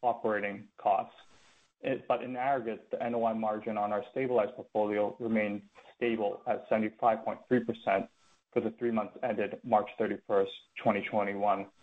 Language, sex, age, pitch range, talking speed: English, male, 20-39, 110-125 Hz, 120 wpm